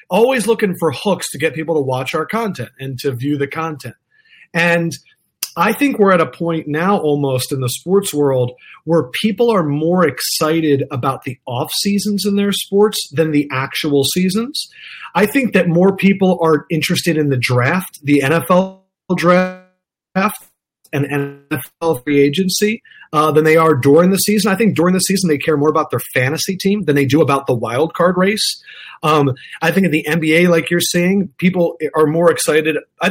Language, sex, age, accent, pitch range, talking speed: English, male, 30-49, American, 145-185 Hz, 185 wpm